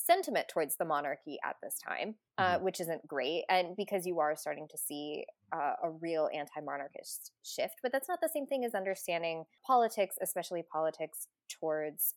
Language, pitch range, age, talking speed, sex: English, 175-240 Hz, 20-39, 175 wpm, female